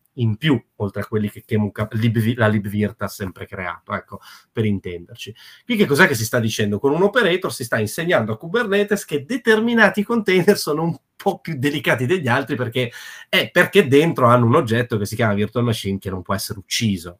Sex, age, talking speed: male, 30-49, 200 wpm